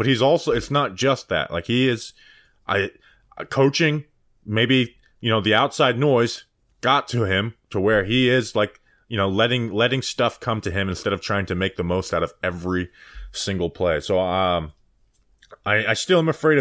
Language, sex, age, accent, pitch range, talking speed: English, male, 20-39, American, 95-125 Hz, 190 wpm